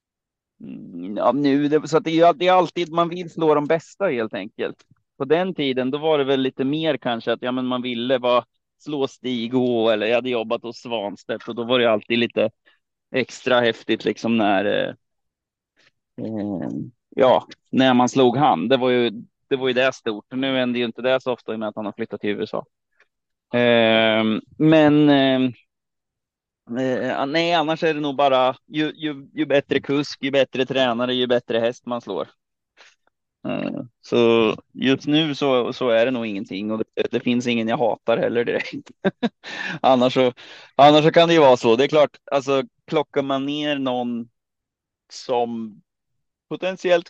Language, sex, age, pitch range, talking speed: Swedish, male, 30-49, 120-150 Hz, 180 wpm